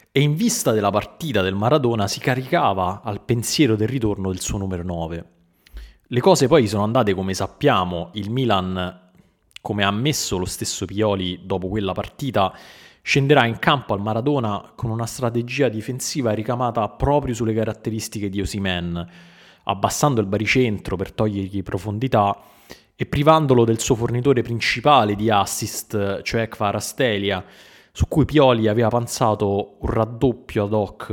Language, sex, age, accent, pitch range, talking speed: Italian, male, 20-39, native, 100-125 Hz, 145 wpm